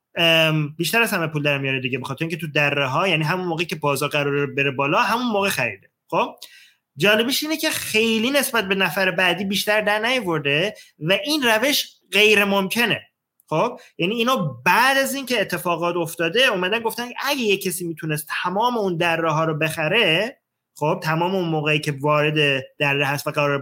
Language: Persian